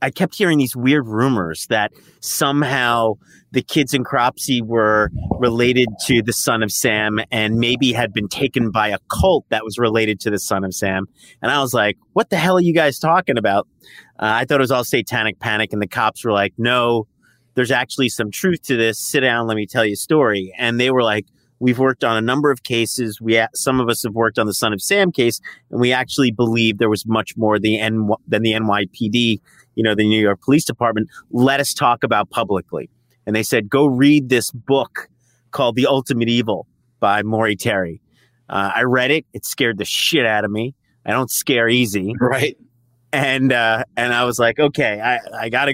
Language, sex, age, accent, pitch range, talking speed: English, male, 30-49, American, 110-135 Hz, 210 wpm